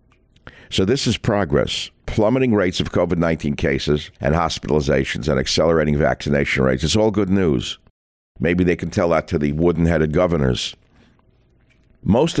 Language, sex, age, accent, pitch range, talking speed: English, male, 60-79, American, 75-100 Hz, 140 wpm